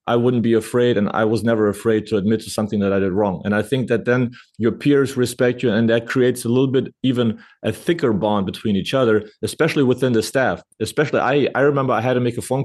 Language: English